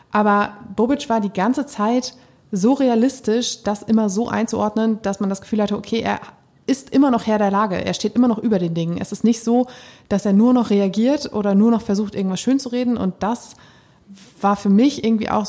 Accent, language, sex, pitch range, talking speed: German, German, female, 200-240 Hz, 215 wpm